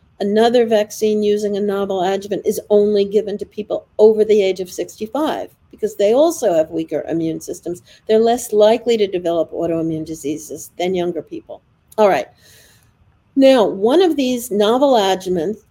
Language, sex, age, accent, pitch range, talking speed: English, female, 50-69, American, 195-245 Hz, 155 wpm